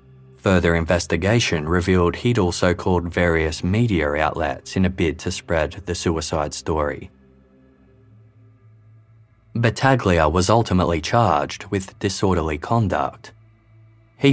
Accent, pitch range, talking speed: Australian, 80-110 Hz, 105 wpm